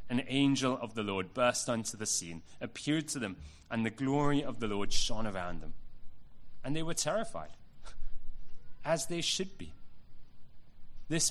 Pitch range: 110-140 Hz